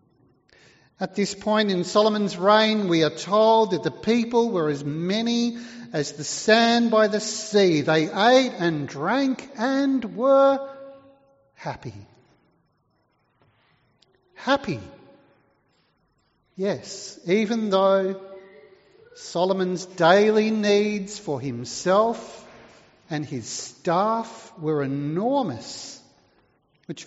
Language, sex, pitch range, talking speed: English, male, 175-235 Hz, 95 wpm